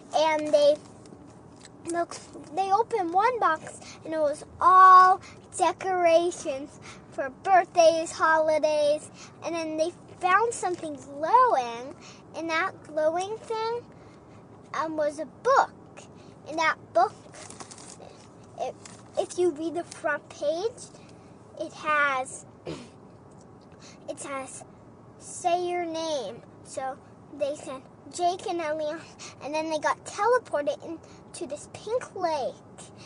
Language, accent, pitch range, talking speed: English, American, 305-370 Hz, 115 wpm